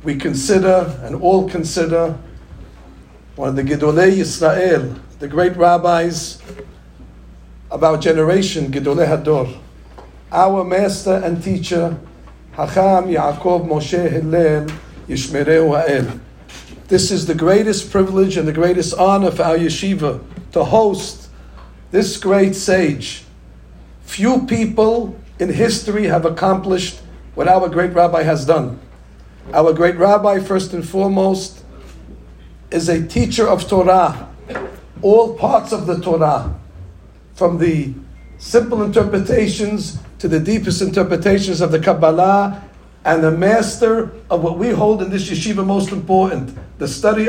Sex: male